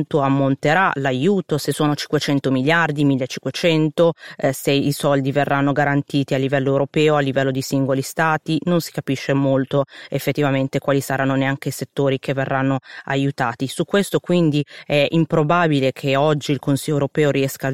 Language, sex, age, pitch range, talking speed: Italian, female, 30-49, 135-155 Hz, 150 wpm